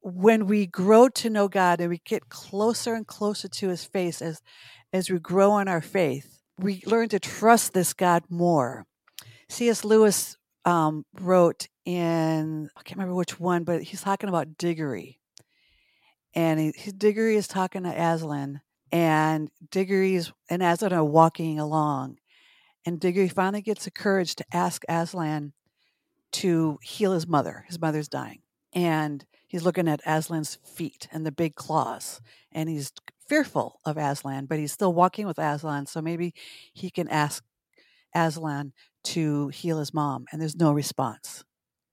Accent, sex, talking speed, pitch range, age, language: American, female, 155 wpm, 155-190 Hz, 50-69, English